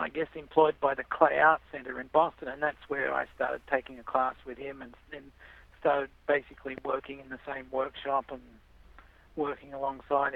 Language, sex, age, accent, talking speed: English, male, 50-69, Australian, 185 wpm